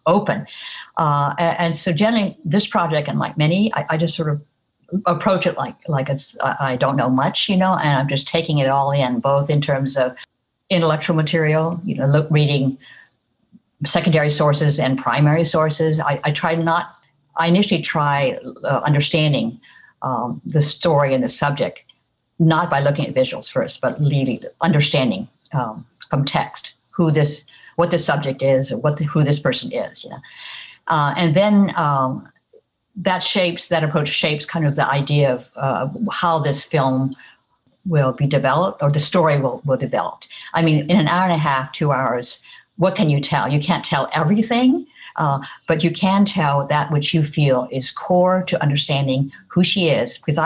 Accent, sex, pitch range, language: American, female, 140-170 Hz, English